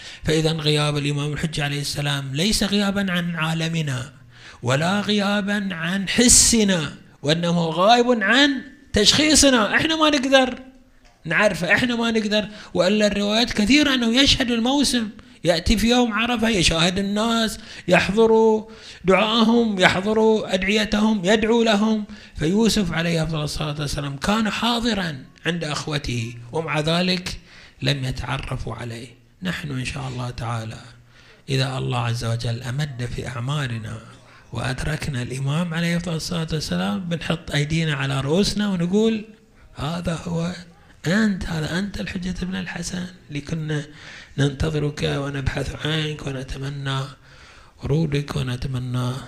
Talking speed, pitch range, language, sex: 115 wpm, 140-210 Hz, Arabic, male